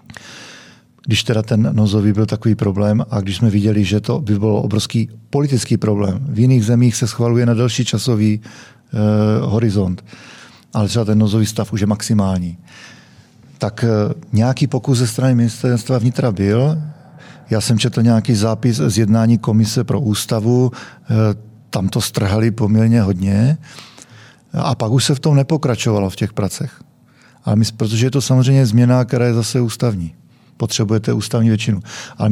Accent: native